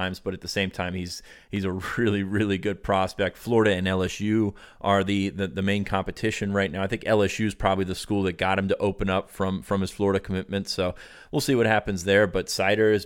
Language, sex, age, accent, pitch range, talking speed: English, male, 30-49, American, 95-105 Hz, 230 wpm